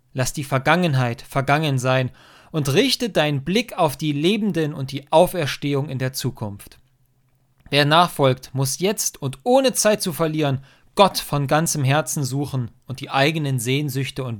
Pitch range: 130-155 Hz